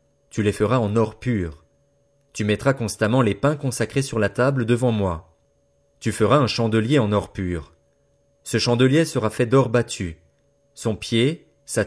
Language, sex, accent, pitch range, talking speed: French, male, French, 105-140 Hz, 165 wpm